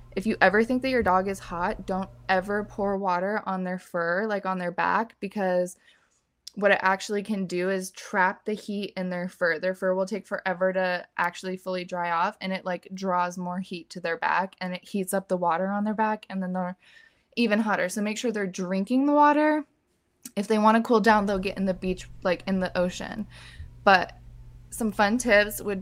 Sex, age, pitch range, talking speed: female, 20-39, 180-210 Hz, 215 wpm